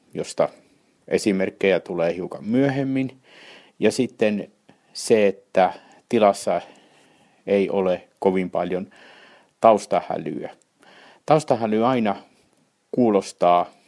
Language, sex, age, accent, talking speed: Finnish, male, 60-79, native, 80 wpm